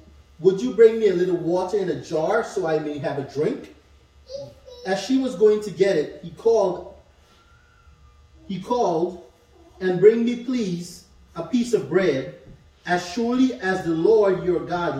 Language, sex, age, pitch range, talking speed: English, male, 30-49, 160-225 Hz, 170 wpm